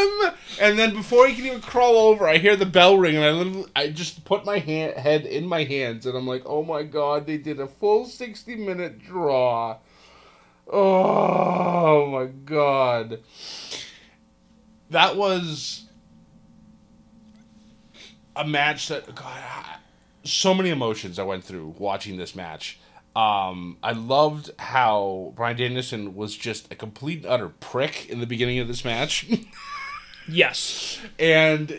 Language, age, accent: English, 30-49, American